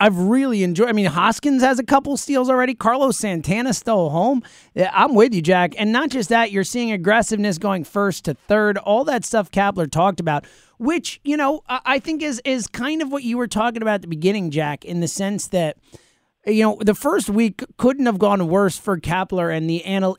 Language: English